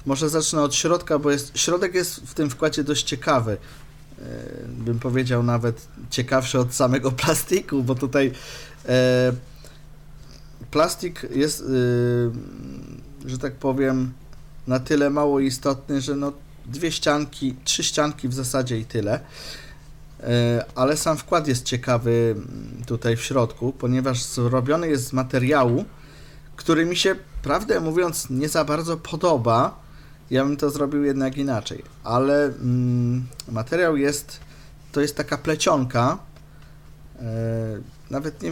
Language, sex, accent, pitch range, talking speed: Polish, male, native, 125-150 Hz, 130 wpm